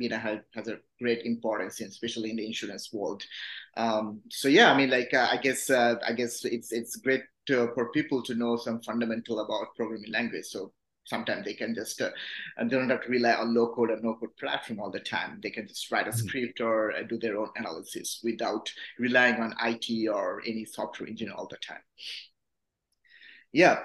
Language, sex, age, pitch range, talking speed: English, male, 30-49, 115-145 Hz, 205 wpm